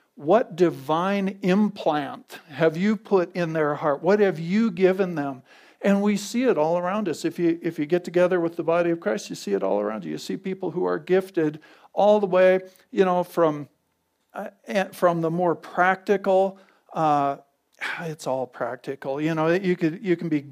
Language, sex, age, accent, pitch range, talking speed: English, male, 50-69, American, 155-190 Hz, 195 wpm